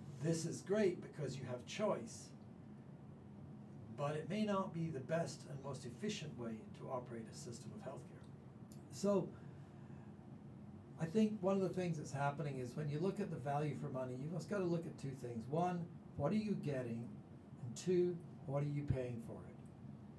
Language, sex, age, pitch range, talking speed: English, male, 60-79, 135-175 Hz, 185 wpm